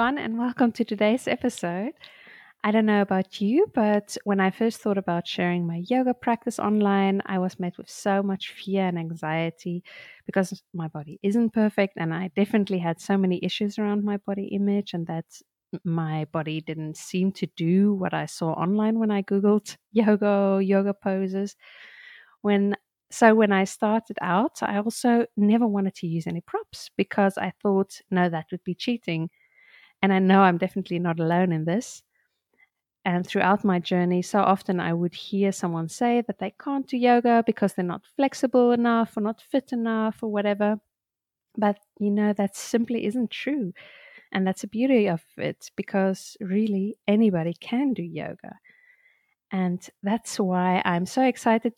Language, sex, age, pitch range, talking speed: English, female, 30-49, 185-225 Hz, 170 wpm